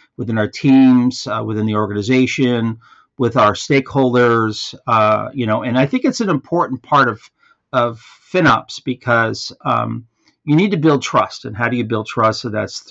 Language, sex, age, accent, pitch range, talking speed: English, male, 50-69, American, 115-140 Hz, 175 wpm